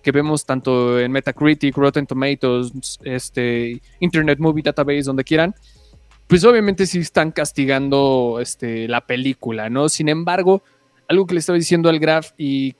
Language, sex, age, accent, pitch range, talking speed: Spanish, male, 20-39, Mexican, 135-195 Hz, 150 wpm